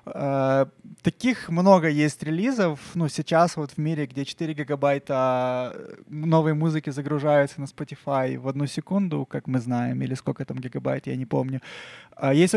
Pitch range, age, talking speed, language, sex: 135-160 Hz, 20-39, 160 wpm, Ukrainian, male